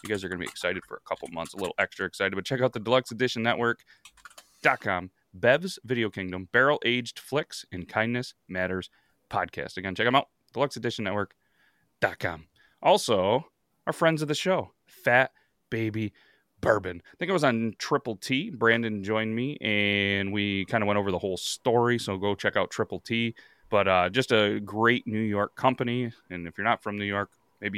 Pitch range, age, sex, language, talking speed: 100-120 Hz, 30-49, male, English, 190 wpm